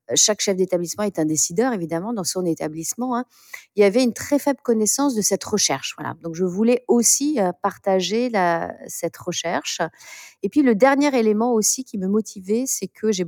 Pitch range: 180-235 Hz